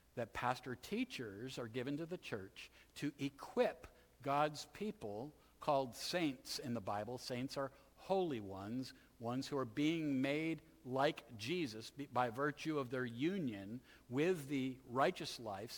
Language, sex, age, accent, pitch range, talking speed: English, male, 60-79, American, 125-150 Hz, 140 wpm